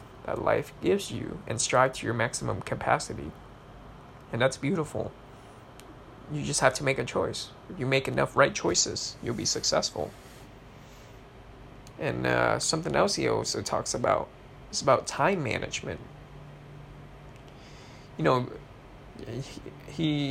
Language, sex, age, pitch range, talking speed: English, male, 20-39, 110-140 Hz, 130 wpm